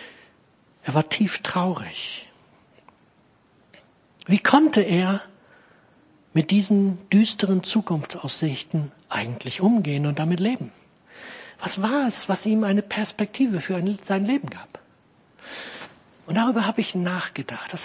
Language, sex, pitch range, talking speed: German, male, 175-225 Hz, 110 wpm